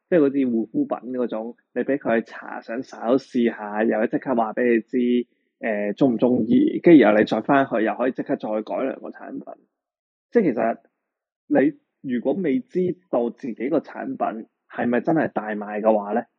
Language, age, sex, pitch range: Chinese, 20-39, male, 115-160 Hz